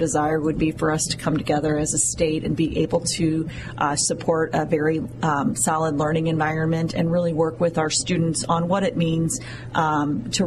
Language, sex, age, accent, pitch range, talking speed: English, female, 30-49, American, 155-175 Hz, 200 wpm